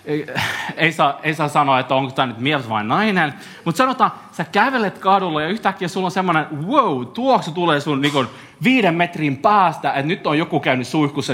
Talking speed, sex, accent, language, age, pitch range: 200 wpm, male, native, Finnish, 30-49, 145-205 Hz